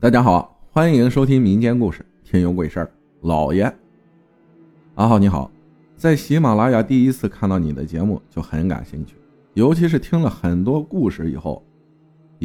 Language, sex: Chinese, male